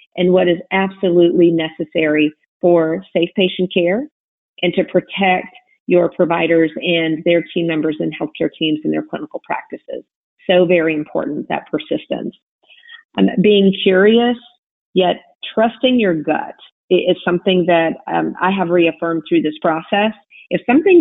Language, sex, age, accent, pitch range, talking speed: English, female, 40-59, American, 165-190 Hz, 140 wpm